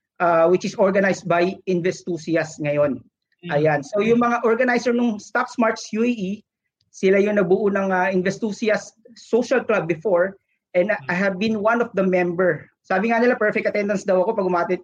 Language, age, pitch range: Filipino, 40-59, 180-225 Hz